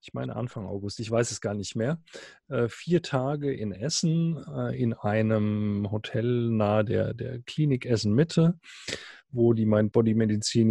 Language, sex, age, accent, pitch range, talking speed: German, male, 30-49, German, 105-135 Hz, 150 wpm